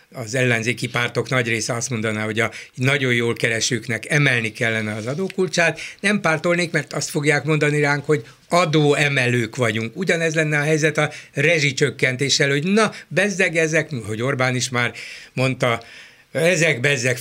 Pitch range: 120-160 Hz